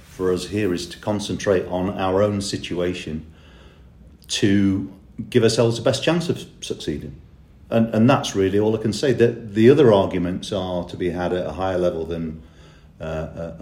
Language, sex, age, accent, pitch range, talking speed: English, male, 40-59, British, 85-110 Hz, 170 wpm